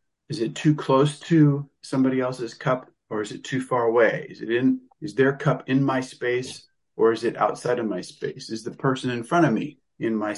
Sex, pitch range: male, 120-145 Hz